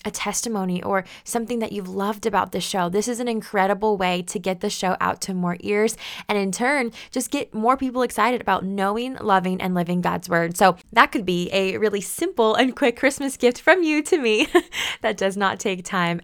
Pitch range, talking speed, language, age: 185-235 Hz, 215 wpm, English, 20-39